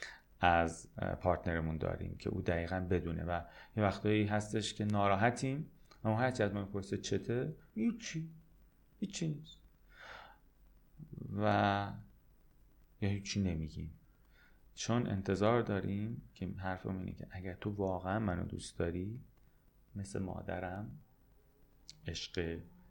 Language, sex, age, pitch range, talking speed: Persian, male, 30-49, 90-110 Hz, 110 wpm